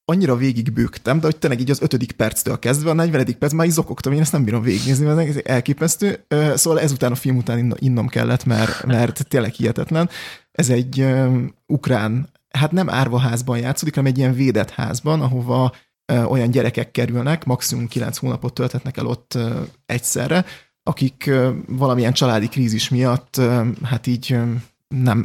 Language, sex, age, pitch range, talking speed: Hungarian, male, 30-49, 120-135 Hz, 155 wpm